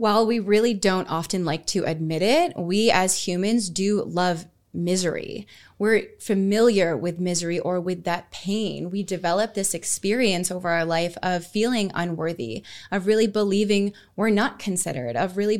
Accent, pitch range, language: American, 175-210 Hz, English